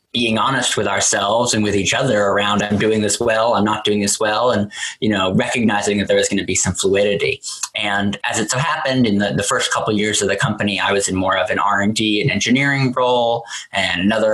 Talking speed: 245 wpm